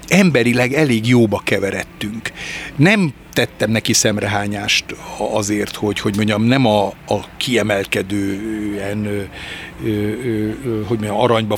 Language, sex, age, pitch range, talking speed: Hungarian, male, 60-79, 110-135 Hz, 90 wpm